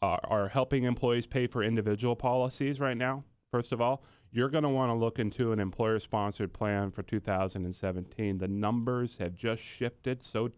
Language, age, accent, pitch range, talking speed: English, 40-59, American, 105-135 Hz, 170 wpm